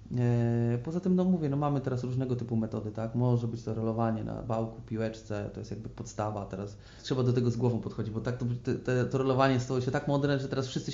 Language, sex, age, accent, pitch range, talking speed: Polish, male, 20-39, native, 110-125 Hz, 225 wpm